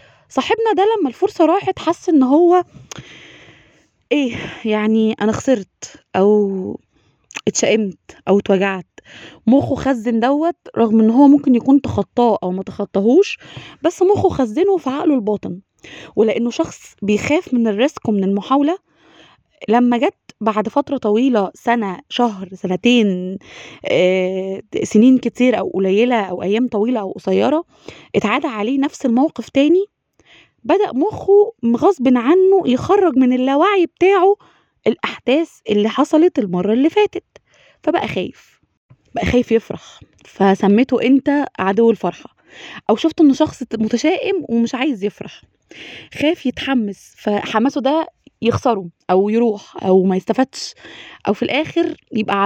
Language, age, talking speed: Arabic, 20-39, 120 wpm